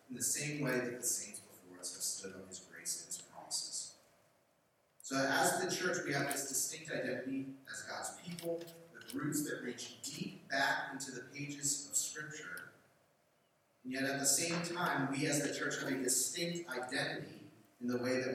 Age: 30-49